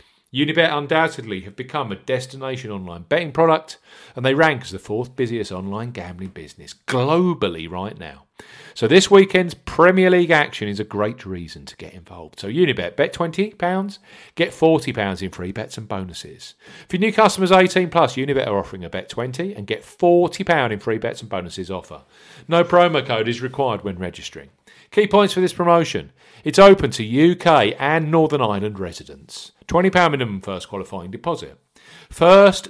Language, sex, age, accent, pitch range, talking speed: English, male, 40-59, British, 100-170 Hz, 170 wpm